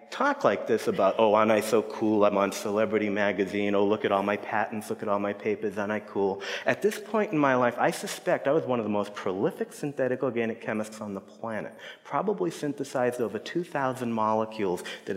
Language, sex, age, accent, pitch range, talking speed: English, male, 30-49, American, 100-130 Hz, 215 wpm